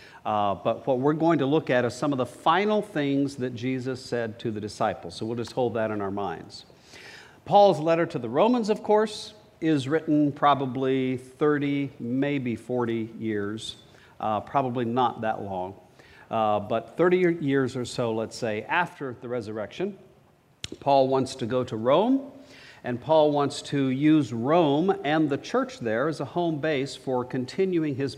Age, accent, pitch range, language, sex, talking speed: 50-69, American, 115-155 Hz, English, male, 170 wpm